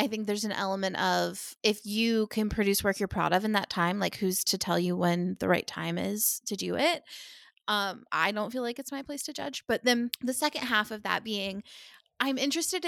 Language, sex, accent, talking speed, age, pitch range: English, female, American, 235 wpm, 20-39, 195-245 Hz